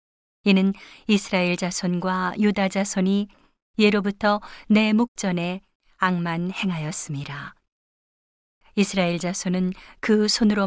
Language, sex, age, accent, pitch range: Korean, female, 40-59, native, 180-205 Hz